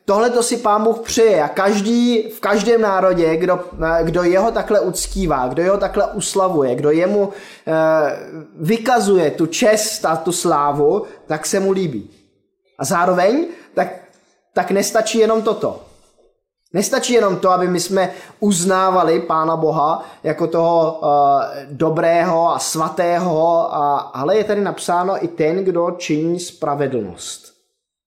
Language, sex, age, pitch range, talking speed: Czech, male, 20-39, 155-200 Hz, 135 wpm